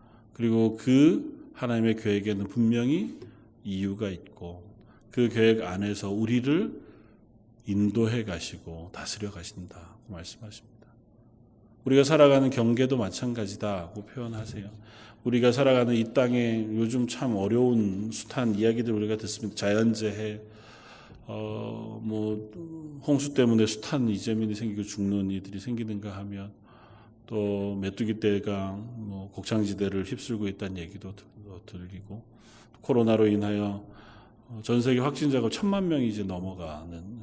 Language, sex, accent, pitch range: Korean, male, native, 100-115 Hz